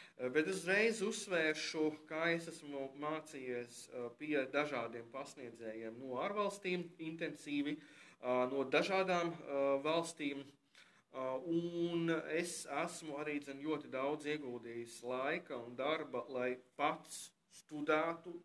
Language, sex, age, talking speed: English, male, 20-39, 90 wpm